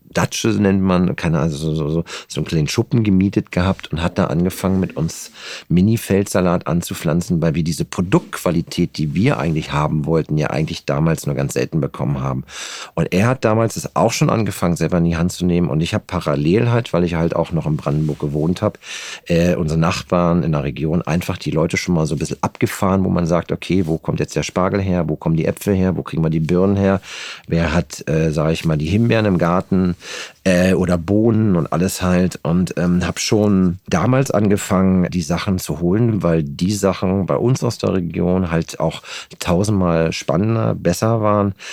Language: German